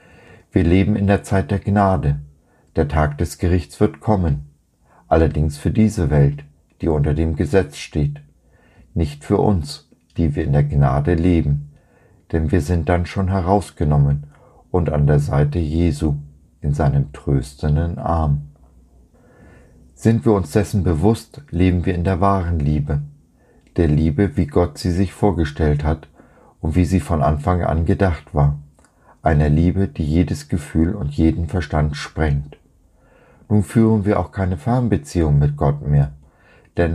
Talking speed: 150 wpm